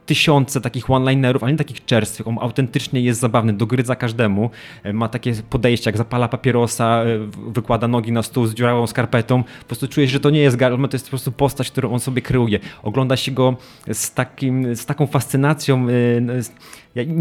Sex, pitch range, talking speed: male, 115-140 Hz, 180 wpm